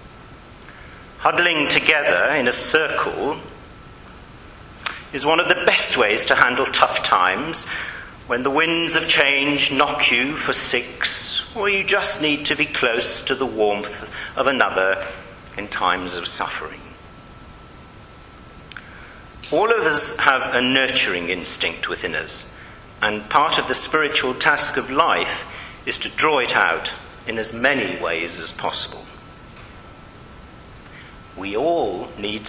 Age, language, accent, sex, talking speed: 50-69, English, British, male, 130 wpm